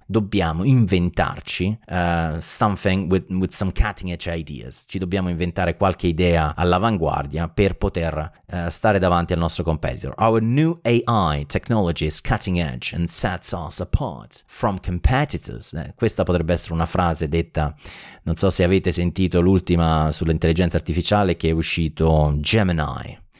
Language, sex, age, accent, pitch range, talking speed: Italian, male, 30-49, native, 80-95 Hz, 140 wpm